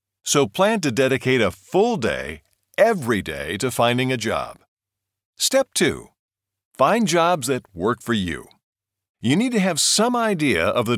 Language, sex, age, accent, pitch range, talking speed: English, male, 50-69, American, 110-165 Hz, 160 wpm